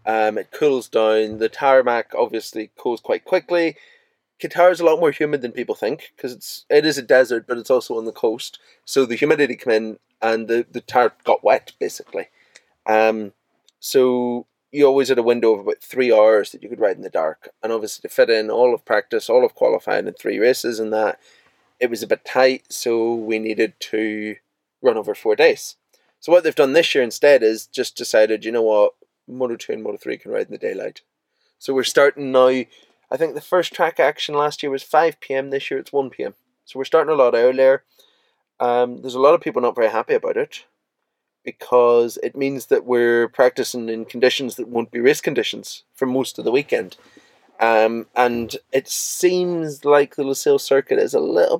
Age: 20-39